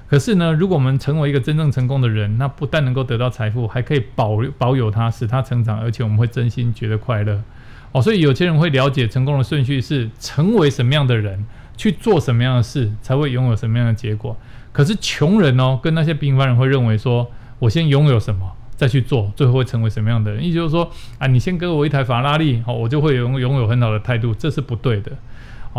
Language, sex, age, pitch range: Chinese, male, 20-39, 115-140 Hz